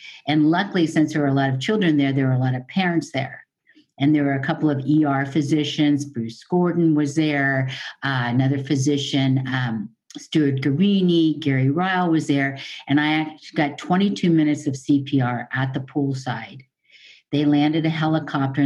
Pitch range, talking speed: 135-155 Hz, 175 wpm